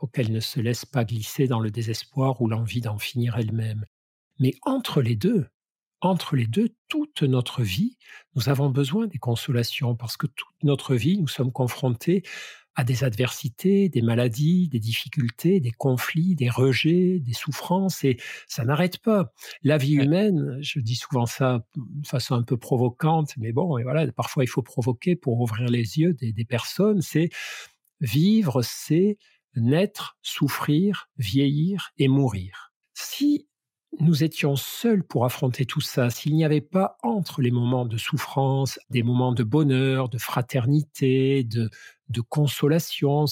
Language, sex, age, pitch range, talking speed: French, male, 50-69, 125-165 Hz, 160 wpm